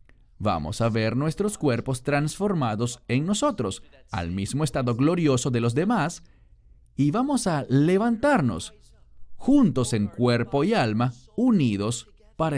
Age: 40-59